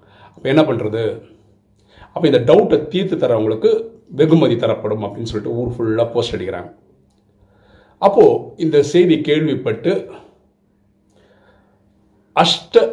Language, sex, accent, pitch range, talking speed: Tamil, male, native, 105-155 Hz, 95 wpm